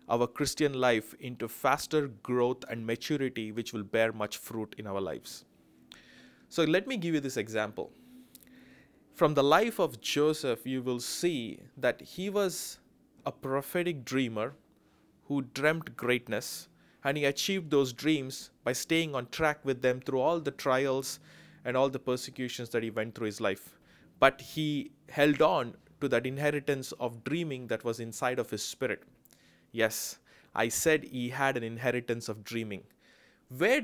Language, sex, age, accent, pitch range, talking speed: English, male, 20-39, Indian, 120-155 Hz, 160 wpm